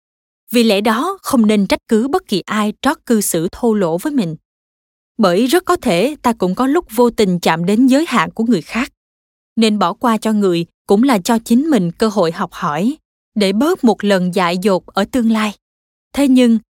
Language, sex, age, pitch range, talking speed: Vietnamese, female, 20-39, 195-255 Hz, 210 wpm